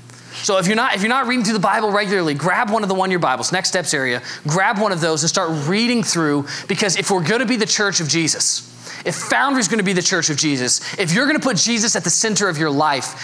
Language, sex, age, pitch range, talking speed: English, male, 20-39, 150-205 Hz, 270 wpm